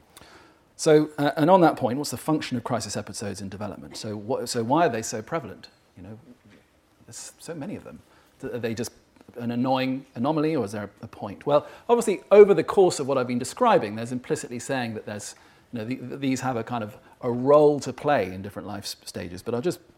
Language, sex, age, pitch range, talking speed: English, male, 40-59, 115-150 Hz, 220 wpm